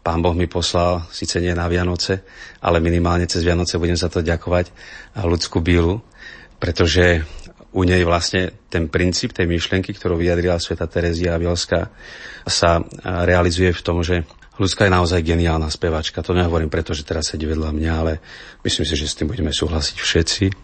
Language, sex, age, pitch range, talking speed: Slovak, male, 40-59, 85-95 Hz, 170 wpm